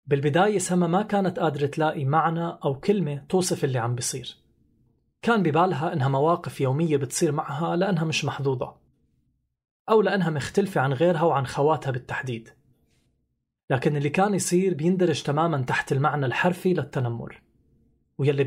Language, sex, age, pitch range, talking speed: Arabic, male, 30-49, 140-175 Hz, 135 wpm